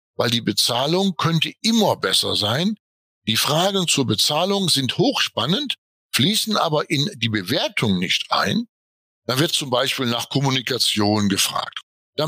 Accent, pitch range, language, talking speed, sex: German, 120-170 Hz, German, 135 wpm, male